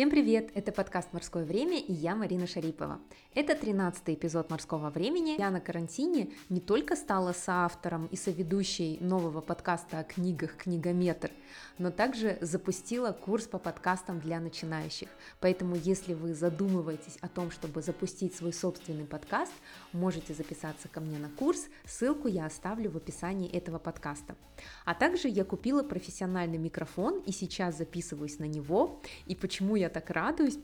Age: 20-39